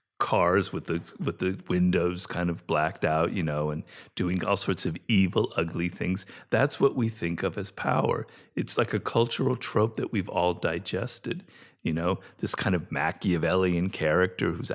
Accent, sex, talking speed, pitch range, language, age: American, male, 180 wpm, 95-150 Hz, English, 50-69